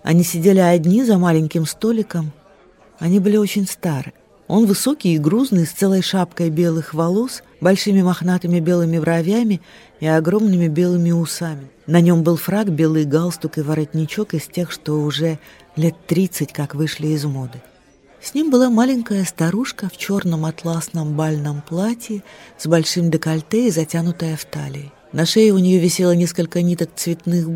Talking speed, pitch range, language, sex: 150 wpm, 155-190 Hz, Russian, female